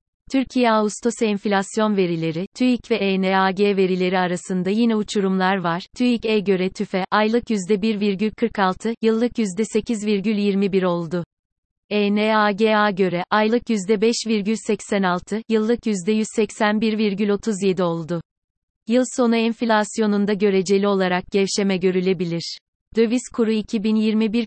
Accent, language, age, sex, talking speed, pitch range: native, Turkish, 30-49, female, 100 wpm, 190-220 Hz